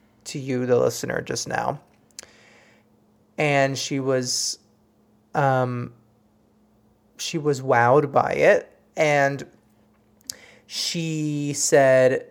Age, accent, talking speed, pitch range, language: 20-39, American, 90 wpm, 125-155 Hz, English